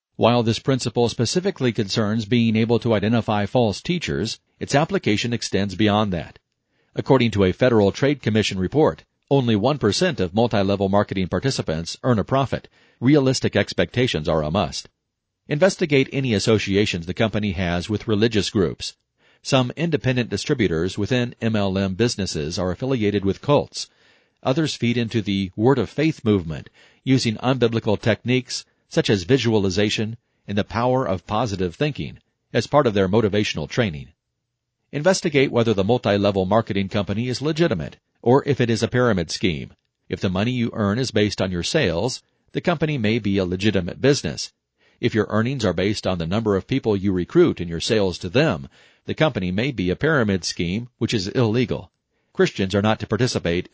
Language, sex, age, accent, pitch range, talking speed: English, male, 50-69, American, 100-125 Hz, 160 wpm